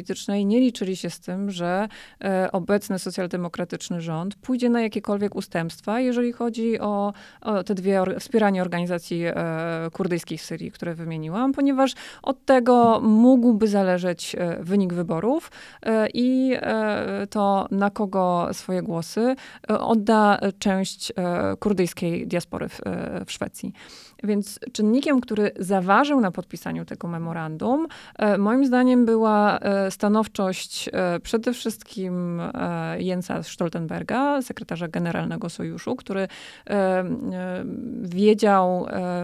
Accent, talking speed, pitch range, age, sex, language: native, 115 wpm, 180-225 Hz, 20-39, female, Polish